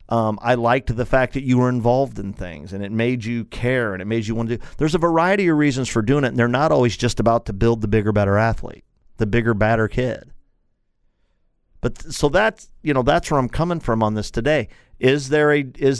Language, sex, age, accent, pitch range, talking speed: English, male, 50-69, American, 105-135 Hz, 240 wpm